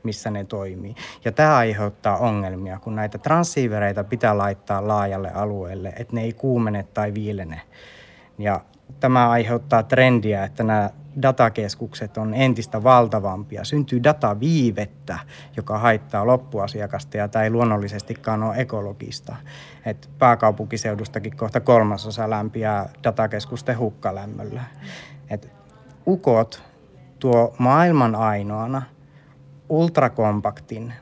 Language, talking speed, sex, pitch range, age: Finnish, 105 wpm, male, 105-130 Hz, 30-49